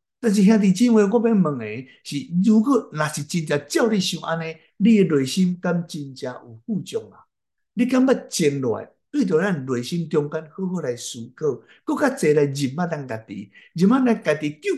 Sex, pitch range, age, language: male, 140-200 Hz, 60-79, Chinese